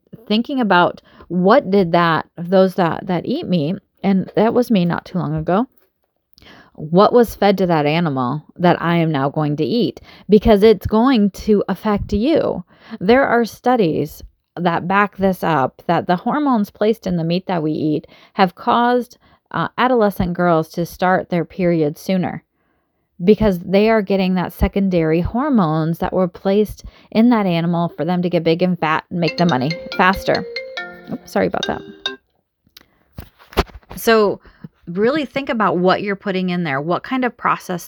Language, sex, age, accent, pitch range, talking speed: English, female, 30-49, American, 170-220 Hz, 165 wpm